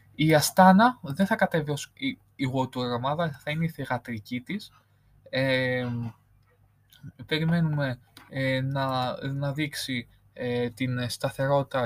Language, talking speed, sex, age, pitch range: Greek, 115 wpm, male, 20-39, 120-150 Hz